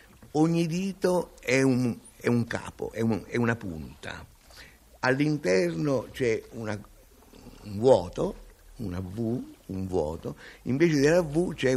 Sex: male